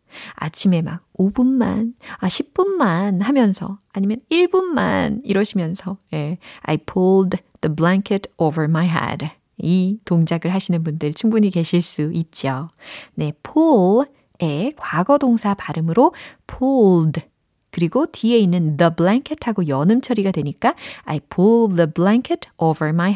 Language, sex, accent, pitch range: Korean, female, native, 165-235 Hz